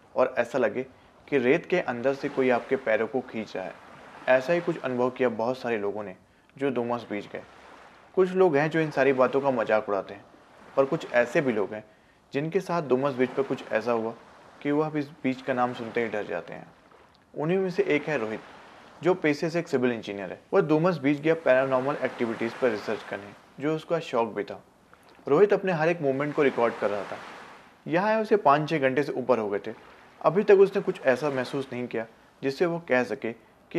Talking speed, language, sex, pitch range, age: 220 wpm, Hindi, male, 115-150 Hz, 30-49